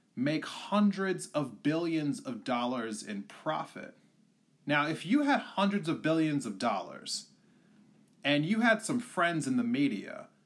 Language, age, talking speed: English, 30-49, 145 wpm